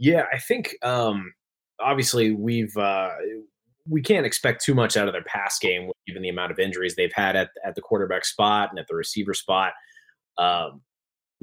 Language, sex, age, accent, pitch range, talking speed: English, male, 20-39, American, 90-140 Hz, 185 wpm